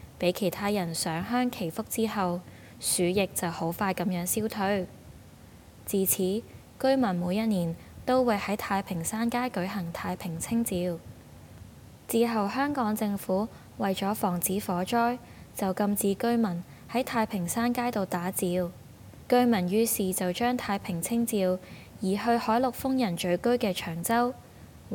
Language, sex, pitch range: Chinese, female, 175-225 Hz